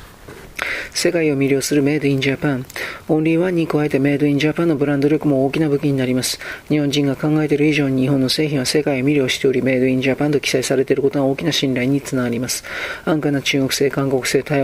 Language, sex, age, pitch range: Japanese, male, 40-59, 130-145 Hz